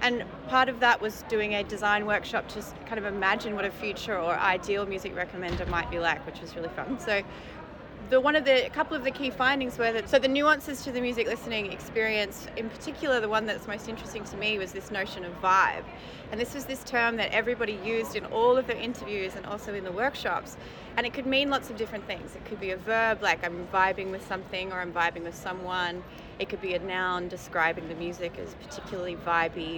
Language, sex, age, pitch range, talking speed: English, female, 30-49, 190-240 Hz, 230 wpm